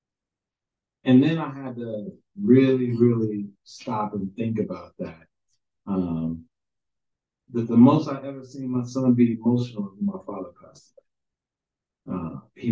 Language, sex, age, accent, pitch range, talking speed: English, male, 40-59, American, 105-135 Hz, 140 wpm